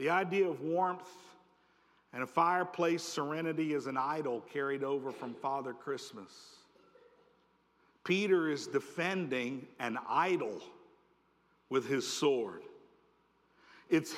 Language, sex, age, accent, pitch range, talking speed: English, male, 50-69, American, 150-185 Hz, 105 wpm